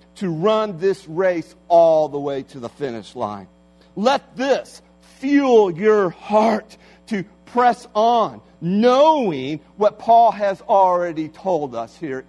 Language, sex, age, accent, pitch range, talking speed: English, male, 50-69, American, 130-195 Hz, 130 wpm